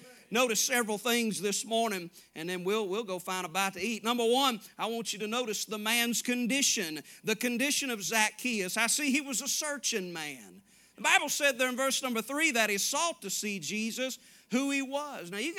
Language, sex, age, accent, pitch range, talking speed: English, male, 40-59, American, 210-280 Hz, 210 wpm